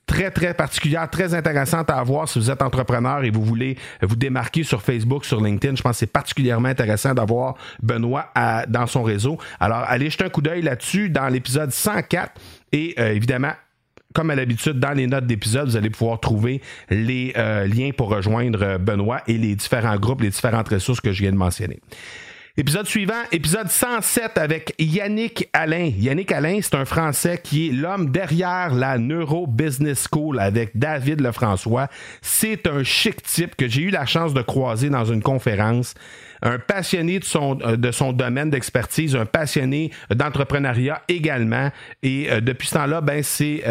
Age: 50-69